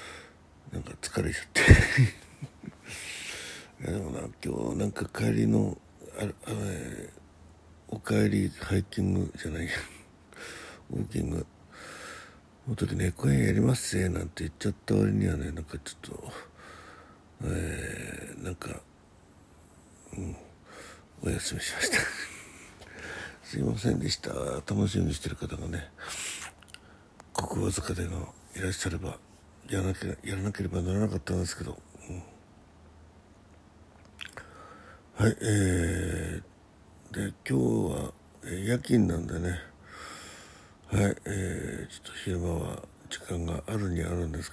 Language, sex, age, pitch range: Japanese, male, 60-79, 80-100 Hz